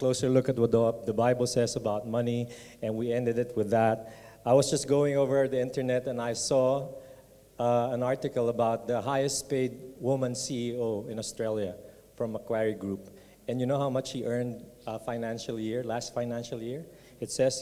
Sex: male